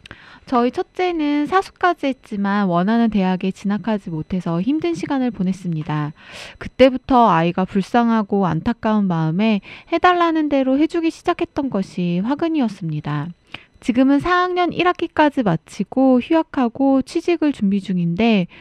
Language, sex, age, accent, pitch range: Korean, female, 20-39, native, 185-275 Hz